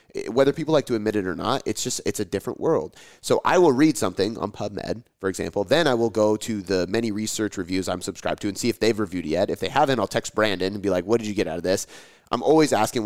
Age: 30-49